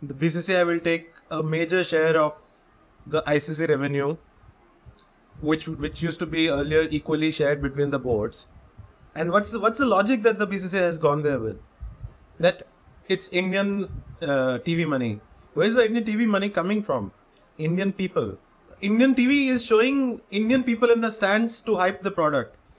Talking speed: 170 wpm